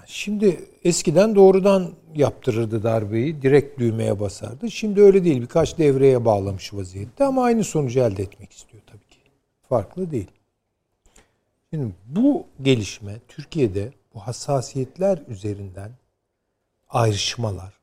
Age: 60-79